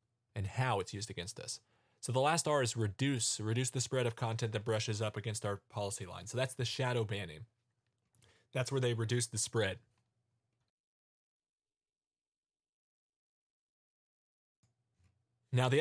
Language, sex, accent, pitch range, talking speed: English, male, American, 115-130 Hz, 140 wpm